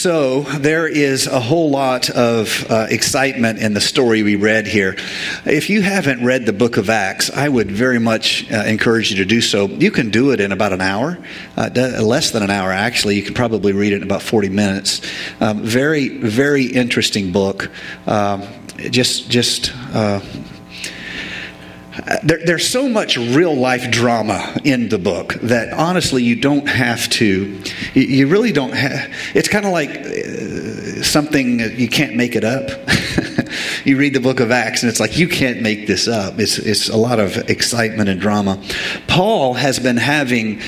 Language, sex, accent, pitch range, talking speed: English, male, American, 105-135 Hz, 180 wpm